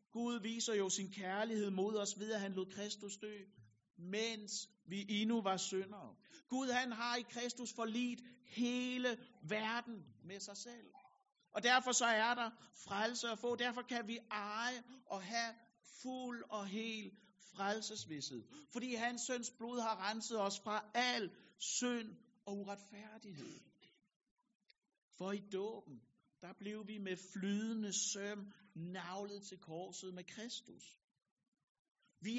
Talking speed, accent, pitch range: 135 wpm, native, 200-235 Hz